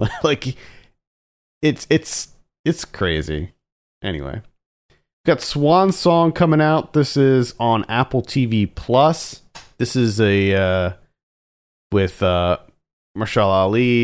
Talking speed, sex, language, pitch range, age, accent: 110 wpm, male, English, 90-125 Hz, 40-59, American